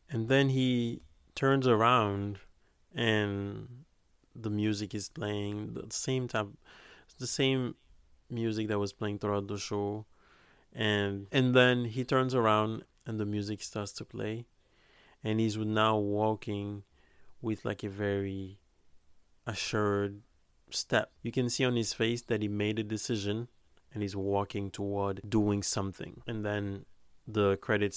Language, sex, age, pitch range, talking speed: English, male, 30-49, 100-115 Hz, 140 wpm